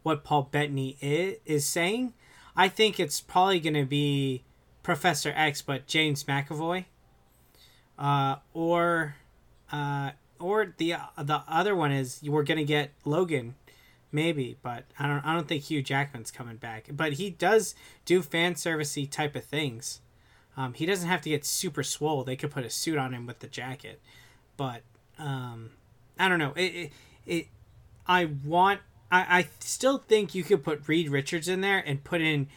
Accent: American